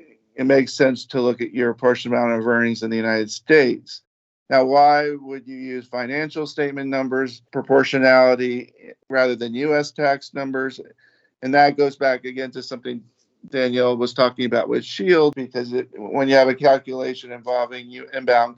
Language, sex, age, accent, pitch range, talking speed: English, male, 50-69, American, 120-135 Hz, 170 wpm